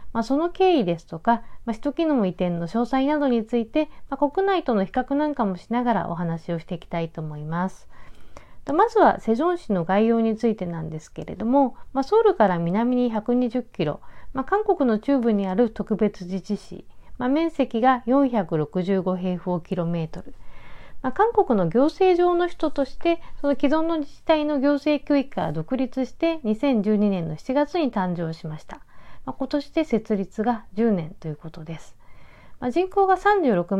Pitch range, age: 180-280 Hz, 50-69